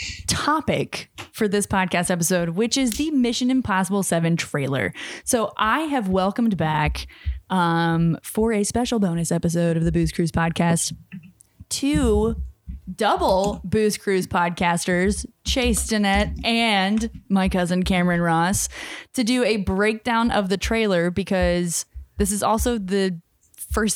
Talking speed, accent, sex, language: 135 wpm, American, female, English